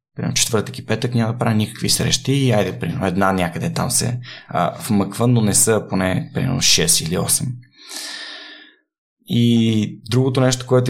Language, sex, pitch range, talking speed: Bulgarian, male, 95-125 Hz, 160 wpm